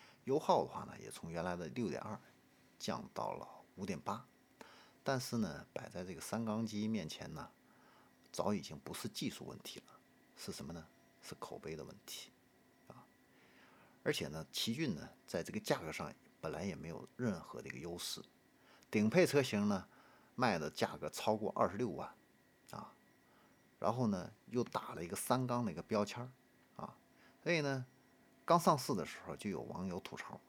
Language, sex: Chinese, male